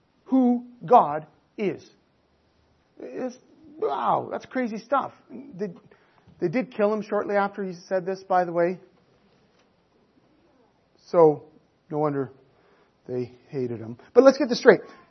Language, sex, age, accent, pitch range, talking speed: English, male, 40-59, American, 200-265 Hz, 125 wpm